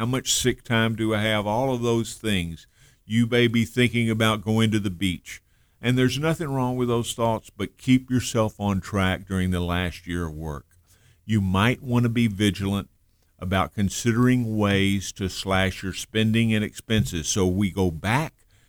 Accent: American